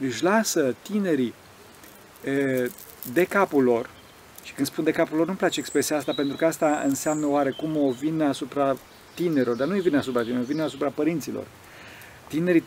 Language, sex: Romanian, male